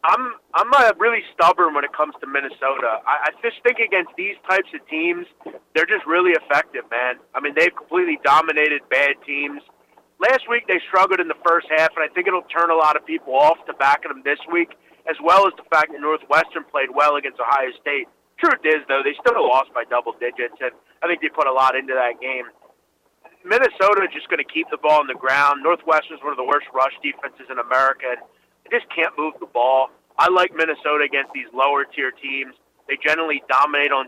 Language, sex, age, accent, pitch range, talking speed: English, male, 30-49, American, 140-190 Hz, 220 wpm